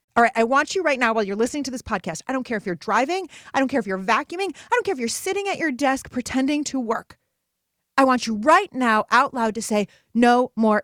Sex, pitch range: female, 165-235 Hz